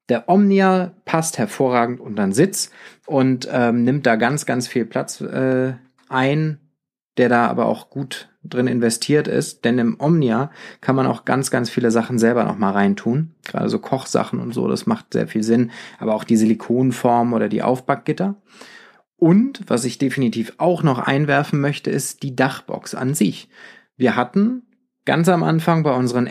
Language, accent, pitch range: German, German, 125-160 Hz